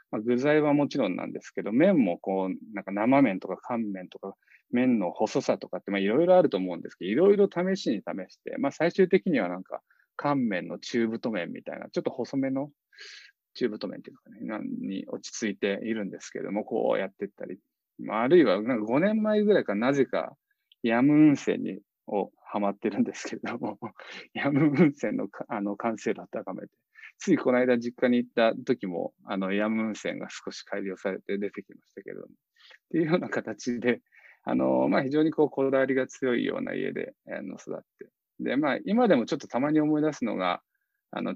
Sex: male